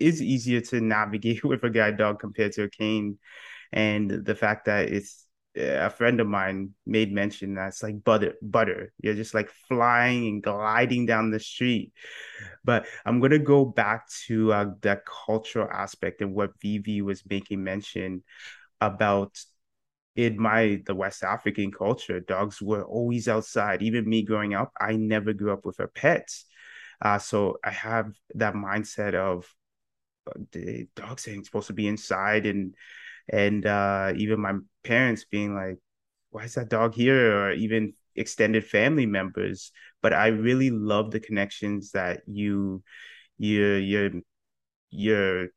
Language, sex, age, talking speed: English, male, 20-39, 155 wpm